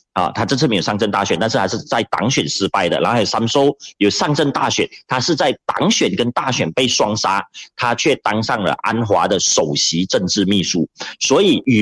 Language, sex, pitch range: Chinese, male, 105-145 Hz